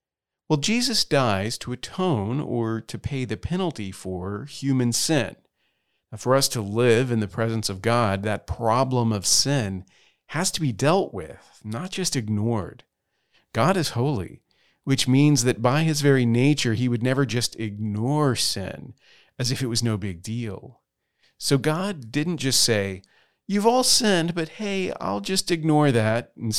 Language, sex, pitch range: English, male, 110-145 Hz